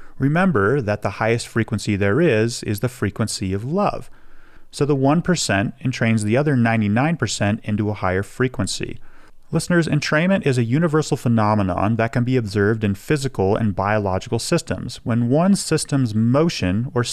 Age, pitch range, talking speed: 30-49, 105-140 Hz, 150 wpm